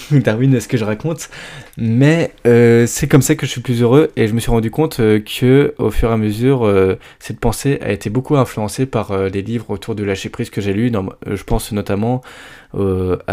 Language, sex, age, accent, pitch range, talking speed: French, male, 20-39, French, 105-130 Hz, 235 wpm